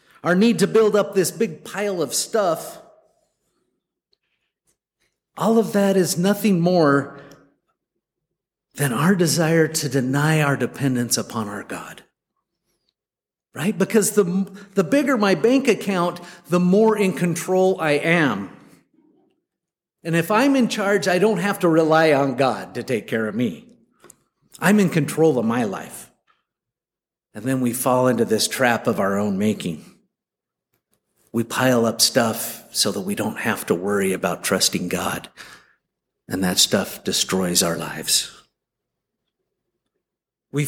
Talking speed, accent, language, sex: 140 wpm, American, English, male